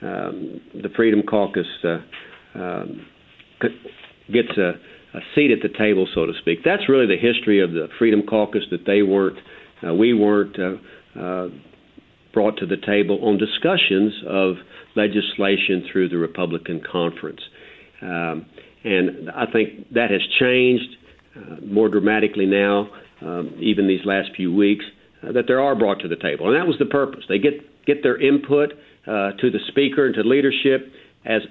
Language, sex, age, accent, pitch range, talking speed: English, male, 50-69, American, 100-140 Hz, 165 wpm